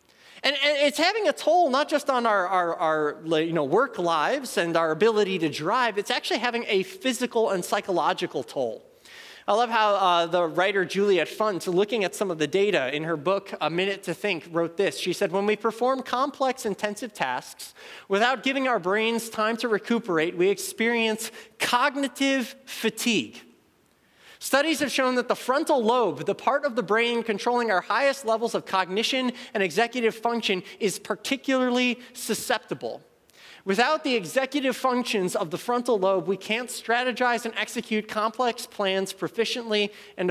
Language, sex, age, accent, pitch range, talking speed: English, male, 20-39, American, 190-250 Hz, 165 wpm